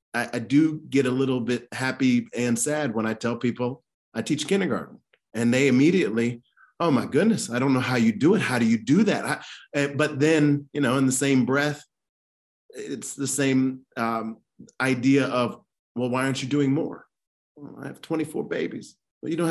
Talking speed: 190 wpm